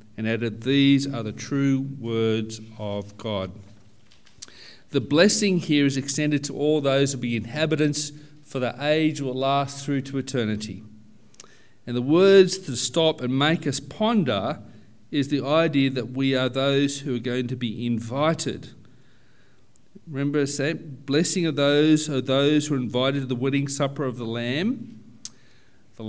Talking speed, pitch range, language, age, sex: 160 wpm, 120-145 Hz, English, 40-59, male